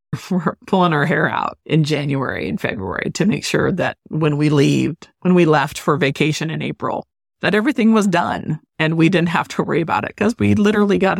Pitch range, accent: 145-180 Hz, American